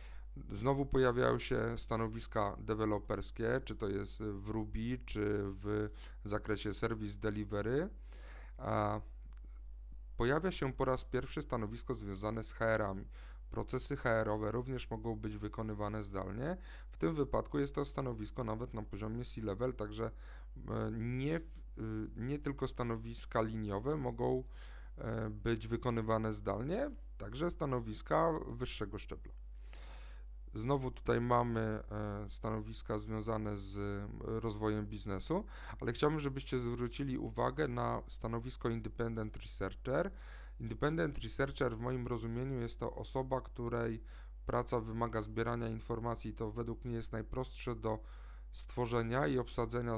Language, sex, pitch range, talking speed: Polish, male, 105-125 Hz, 115 wpm